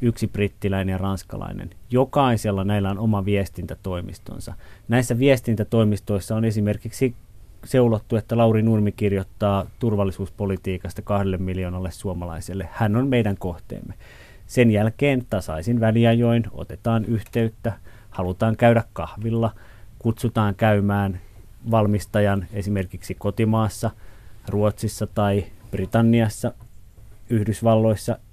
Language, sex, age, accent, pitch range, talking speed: Finnish, male, 30-49, native, 100-120 Hz, 95 wpm